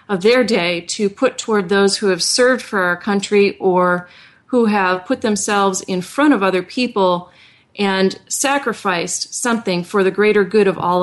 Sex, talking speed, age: female, 175 wpm, 30-49